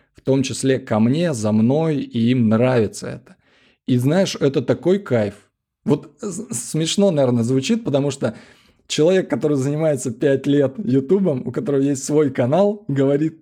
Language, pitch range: Russian, 125-155 Hz